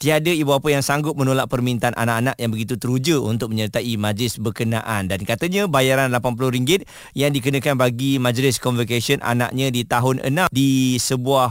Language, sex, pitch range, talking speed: Malay, male, 120-145 Hz, 155 wpm